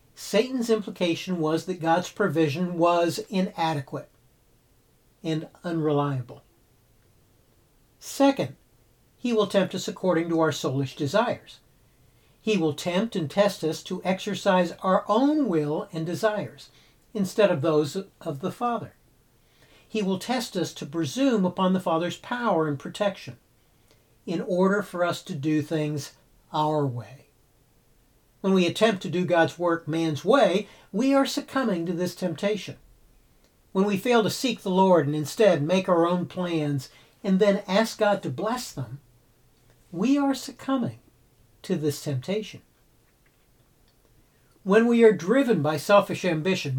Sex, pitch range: male, 150-205 Hz